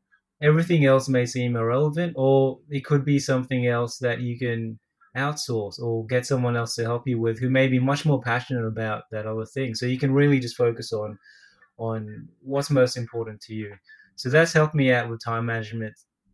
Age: 20-39